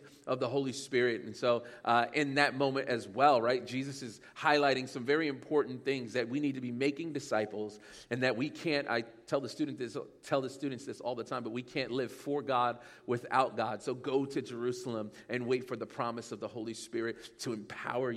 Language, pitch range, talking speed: English, 120-155 Hz, 225 wpm